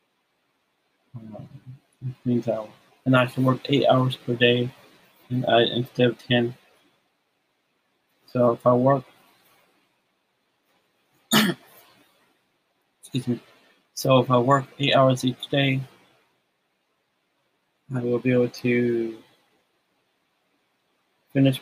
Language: English